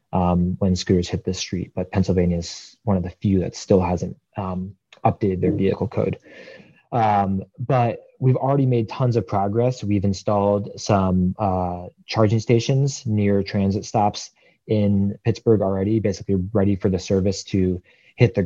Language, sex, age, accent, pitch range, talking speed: English, male, 20-39, American, 95-105 Hz, 160 wpm